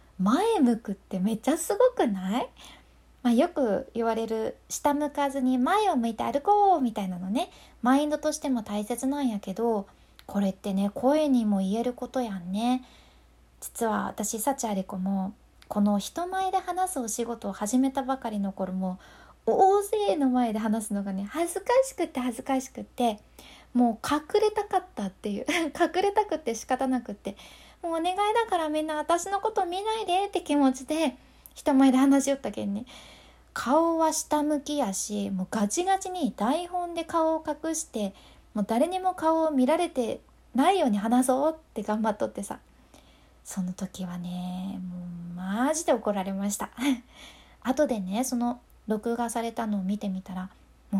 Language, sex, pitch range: Japanese, female, 210-315 Hz